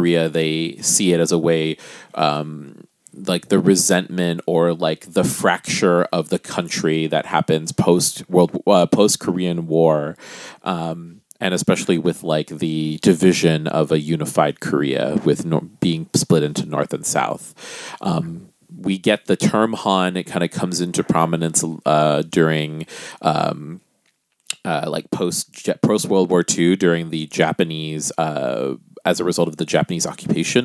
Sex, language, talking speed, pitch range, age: male, English, 155 wpm, 80-100 Hz, 30-49